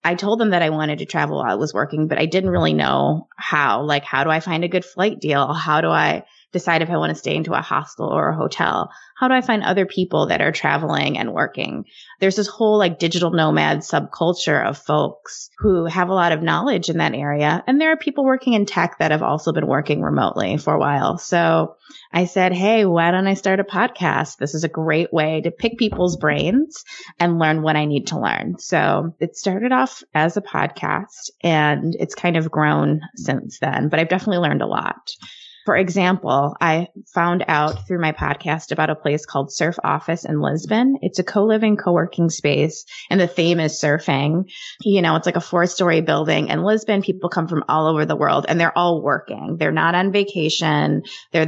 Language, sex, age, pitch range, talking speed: English, female, 20-39, 155-190 Hz, 215 wpm